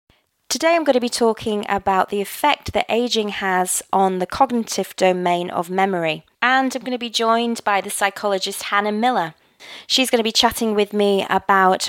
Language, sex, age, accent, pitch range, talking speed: English, female, 20-39, British, 180-235 Hz, 185 wpm